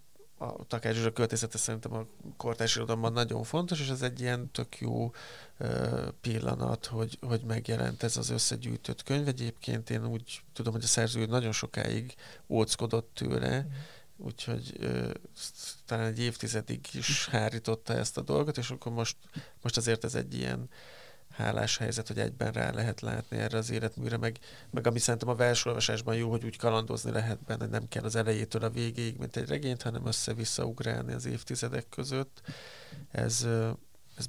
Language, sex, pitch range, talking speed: Hungarian, male, 110-125 Hz, 160 wpm